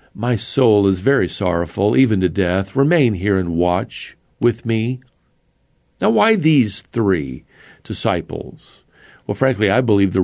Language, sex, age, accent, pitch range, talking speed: English, male, 50-69, American, 100-130 Hz, 140 wpm